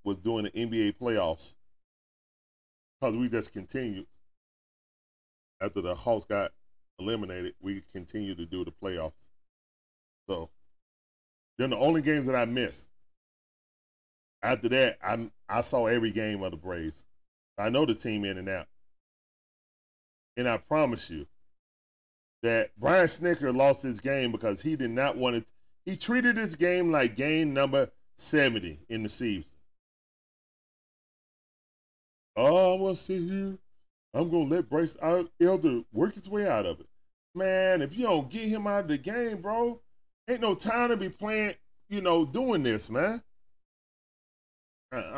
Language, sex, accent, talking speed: English, male, American, 145 wpm